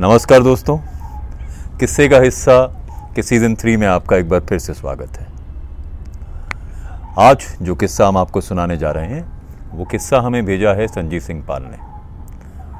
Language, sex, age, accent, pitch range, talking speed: Hindi, male, 40-59, native, 80-110 Hz, 160 wpm